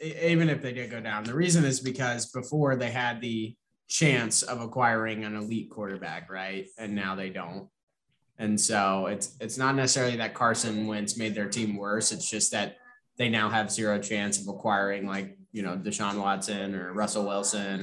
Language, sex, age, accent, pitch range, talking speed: English, male, 20-39, American, 100-130 Hz, 190 wpm